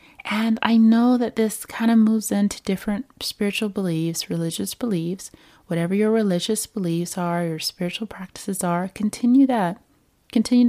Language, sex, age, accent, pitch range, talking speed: English, female, 20-39, American, 175-220 Hz, 145 wpm